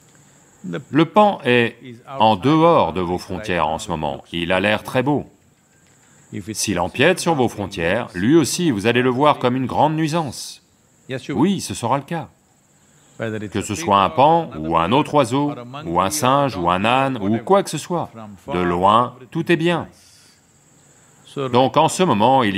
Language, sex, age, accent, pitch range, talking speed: English, male, 40-59, French, 100-150 Hz, 175 wpm